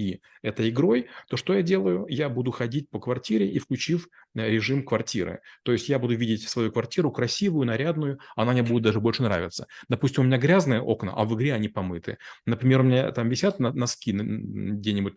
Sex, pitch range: male, 110-130 Hz